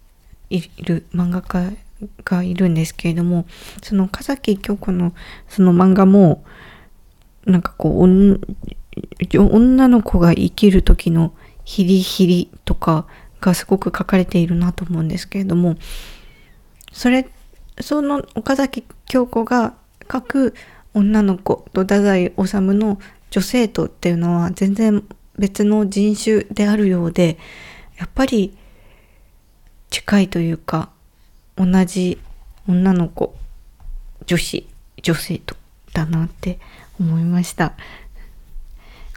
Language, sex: Japanese, female